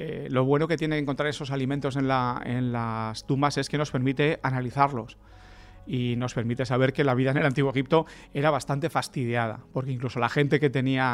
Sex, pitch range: male, 120-140 Hz